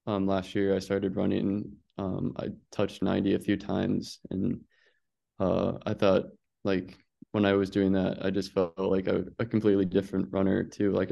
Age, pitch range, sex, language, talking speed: 20-39, 95-100 Hz, male, English, 185 wpm